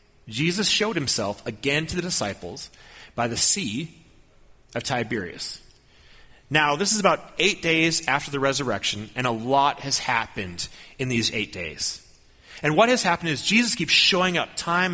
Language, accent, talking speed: English, American, 160 wpm